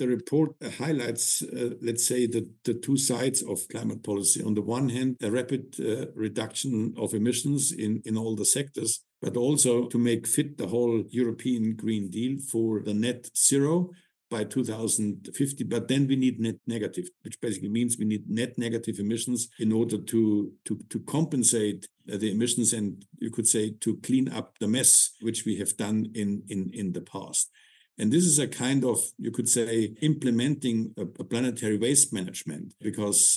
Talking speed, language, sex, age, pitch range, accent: 180 wpm, English, male, 60-79, 110-125 Hz, German